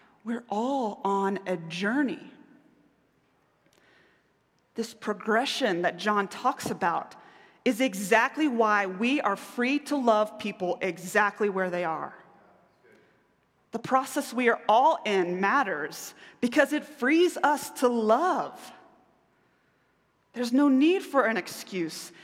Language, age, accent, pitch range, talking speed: English, 30-49, American, 200-260 Hz, 115 wpm